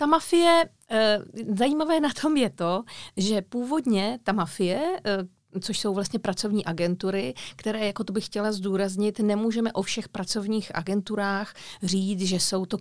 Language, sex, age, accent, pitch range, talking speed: Czech, female, 40-59, native, 190-245 Hz, 145 wpm